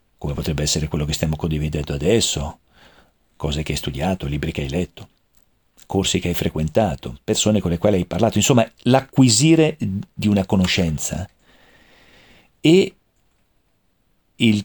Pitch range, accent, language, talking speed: 85-140 Hz, native, Italian, 135 wpm